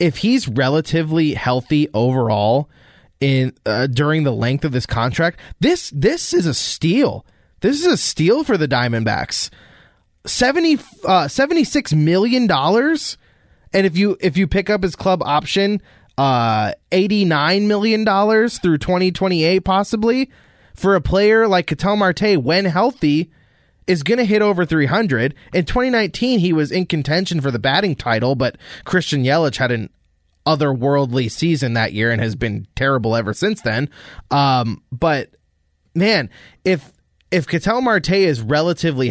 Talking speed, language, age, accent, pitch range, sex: 145 wpm, English, 20-39, American, 130-195 Hz, male